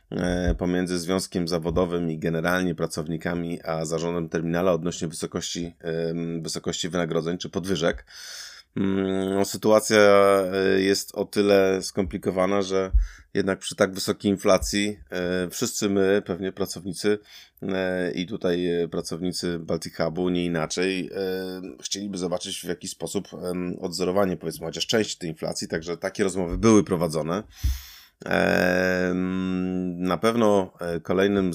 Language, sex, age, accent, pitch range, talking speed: Polish, male, 30-49, native, 85-95 Hz, 105 wpm